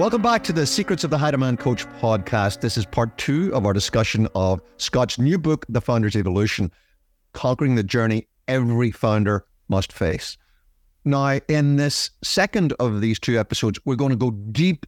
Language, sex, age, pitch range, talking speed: English, male, 50-69, 105-140 Hz, 180 wpm